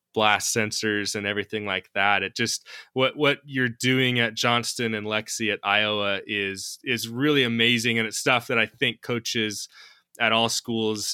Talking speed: 170 wpm